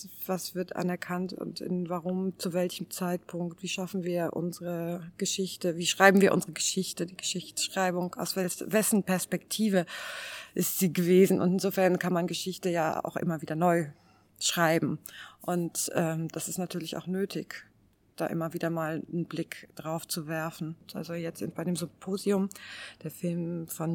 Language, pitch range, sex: German, 165-190 Hz, female